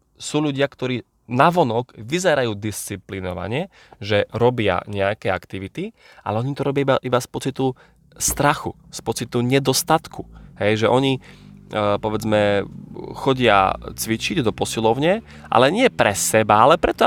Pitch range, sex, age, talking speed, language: 110-140 Hz, male, 20-39, 125 wpm, Slovak